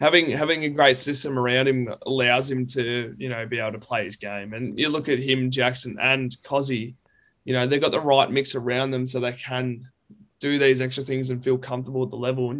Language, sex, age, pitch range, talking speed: English, male, 20-39, 125-150 Hz, 235 wpm